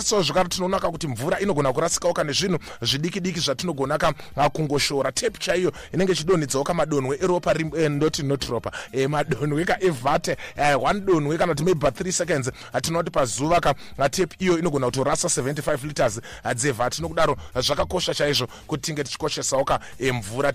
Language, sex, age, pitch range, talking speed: English, male, 30-49, 135-170 Hz, 175 wpm